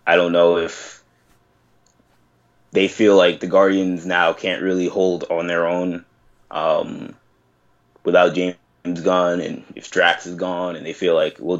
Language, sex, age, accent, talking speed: English, male, 20-39, American, 155 wpm